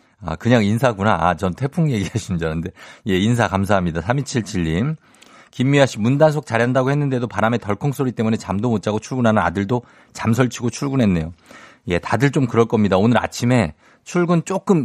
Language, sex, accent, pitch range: Korean, male, native, 110-165 Hz